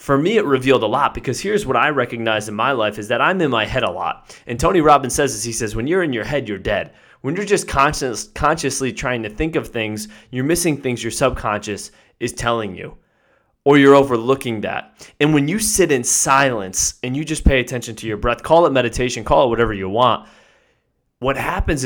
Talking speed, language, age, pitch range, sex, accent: 220 wpm, English, 20-39, 115-145 Hz, male, American